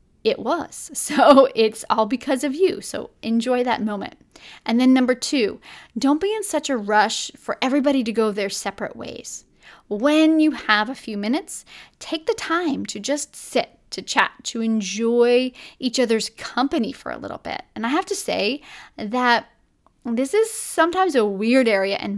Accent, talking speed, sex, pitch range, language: American, 175 wpm, female, 220-275 Hz, English